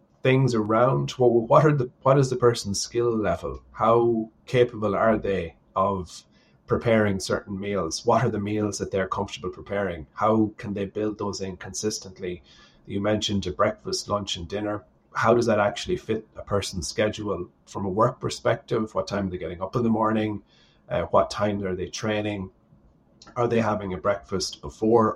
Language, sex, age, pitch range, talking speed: English, male, 30-49, 95-120 Hz, 175 wpm